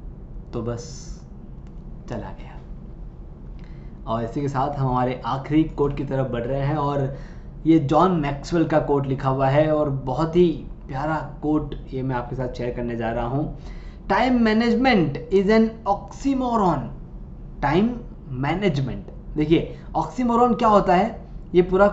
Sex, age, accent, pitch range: male, 20-39, native, 145-210 Hz